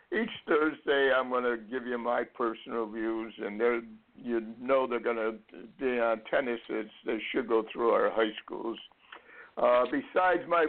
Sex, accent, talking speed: male, American, 165 wpm